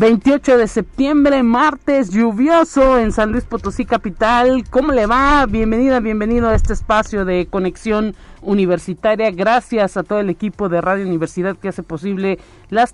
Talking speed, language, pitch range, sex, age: 155 wpm, Spanish, 185-230 Hz, male, 50-69